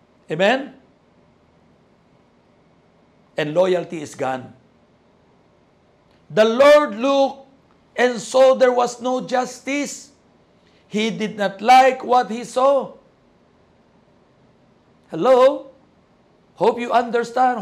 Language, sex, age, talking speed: Filipino, male, 60-79, 85 wpm